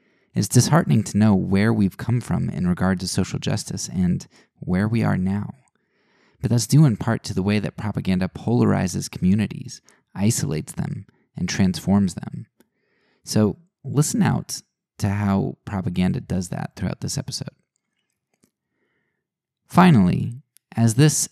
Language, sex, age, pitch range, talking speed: English, male, 20-39, 95-125 Hz, 140 wpm